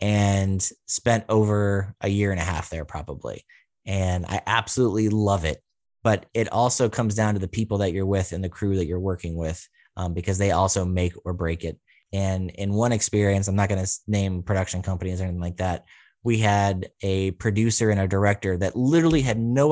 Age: 30-49